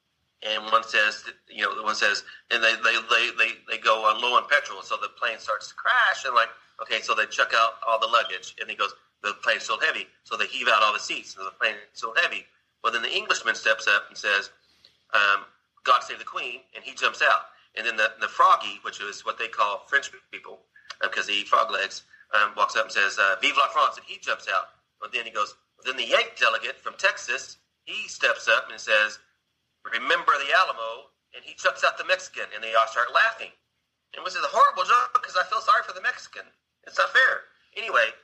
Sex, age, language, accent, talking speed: male, 30-49, English, American, 235 wpm